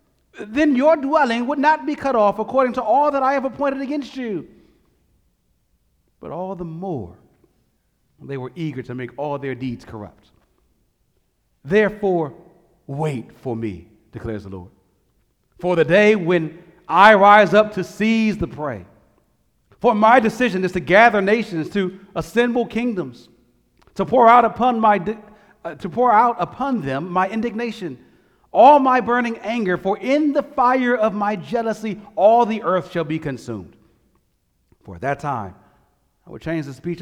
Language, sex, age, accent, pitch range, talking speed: English, male, 40-59, American, 170-245 Hz, 155 wpm